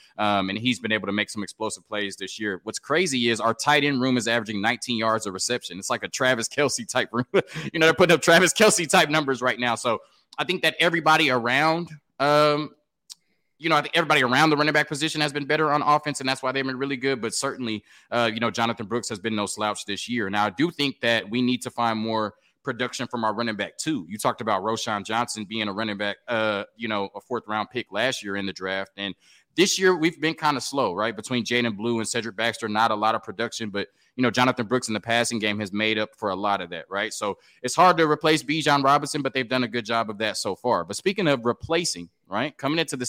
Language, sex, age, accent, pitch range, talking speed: English, male, 20-39, American, 115-150 Hz, 260 wpm